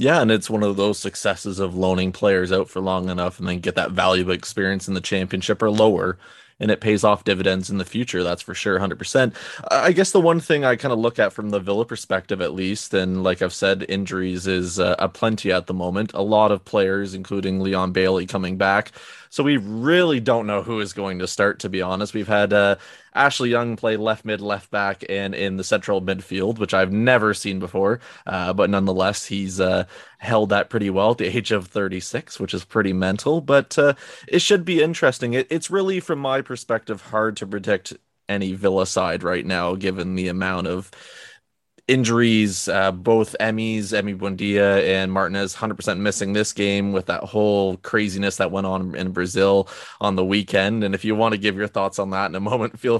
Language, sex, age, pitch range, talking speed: English, male, 20-39, 95-110 Hz, 210 wpm